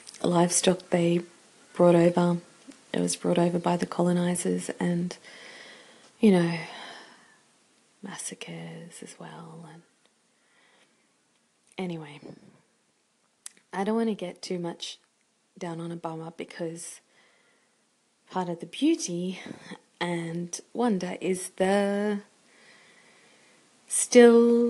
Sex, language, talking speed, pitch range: female, English, 95 wpm, 170-200 Hz